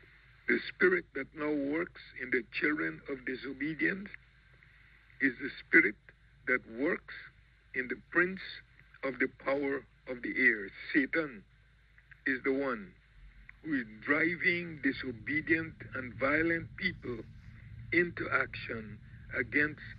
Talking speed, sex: 115 wpm, male